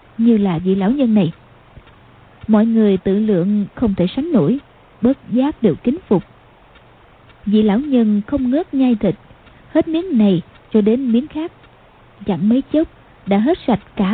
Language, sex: Vietnamese, female